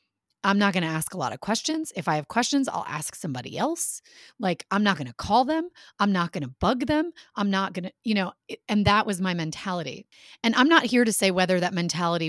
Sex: female